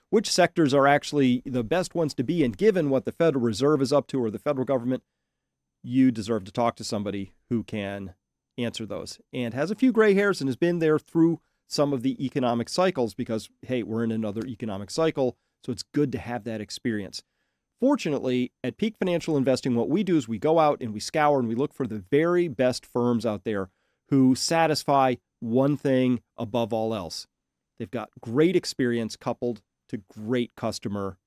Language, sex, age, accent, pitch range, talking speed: English, male, 40-59, American, 115-155 Hz, 195 wpm